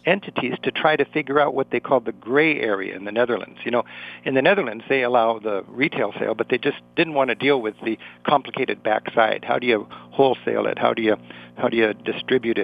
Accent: American